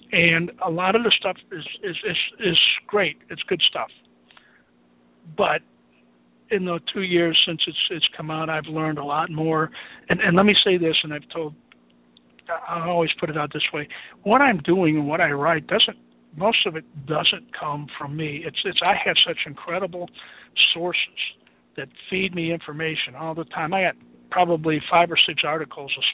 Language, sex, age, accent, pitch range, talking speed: English, male, 50-69, American, 145-170 Hz, 190 wpm